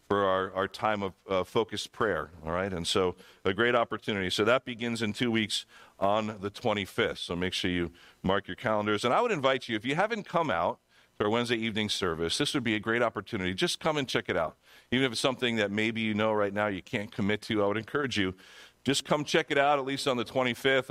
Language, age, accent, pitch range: English, 50-69, American, 100-130 Hz